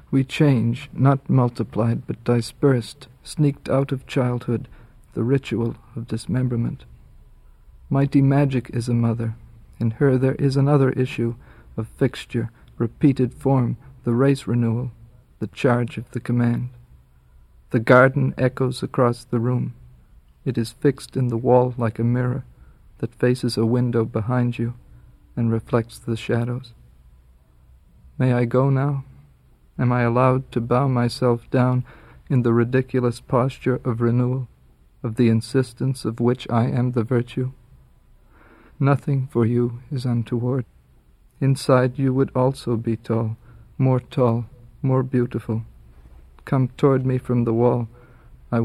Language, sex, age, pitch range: English, male, 50-69, 115-130 Hz